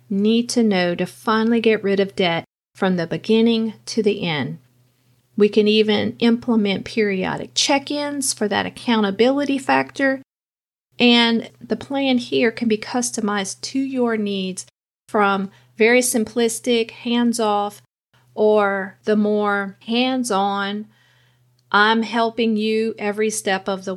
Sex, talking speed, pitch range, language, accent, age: female, 125 wpm, 195-240 Hz, English, American, 40-59